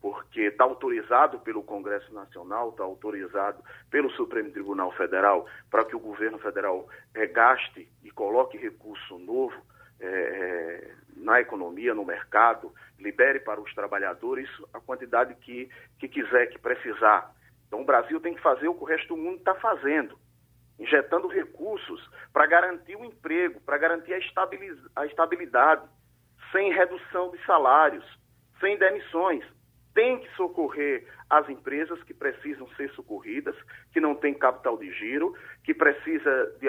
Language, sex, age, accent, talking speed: Portuguese, male, 40-59, Brazilian, 140 wpm